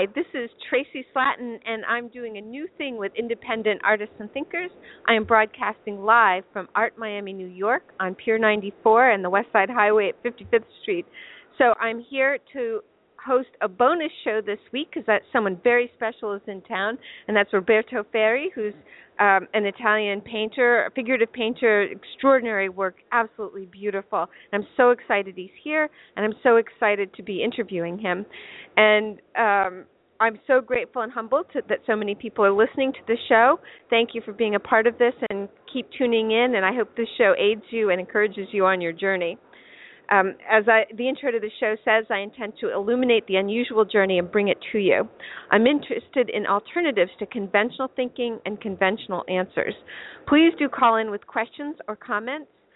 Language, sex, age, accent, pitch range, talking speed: English, female, 50-69, American, 205-245 Hz, 185 wpm